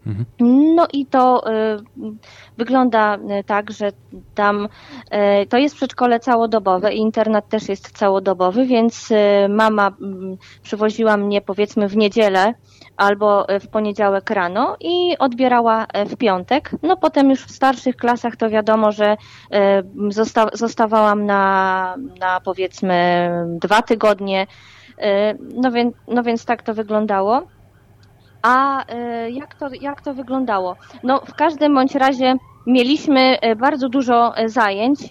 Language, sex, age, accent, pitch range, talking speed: Polish, female, 20-39, native, 200-245 Hz, 125 wpm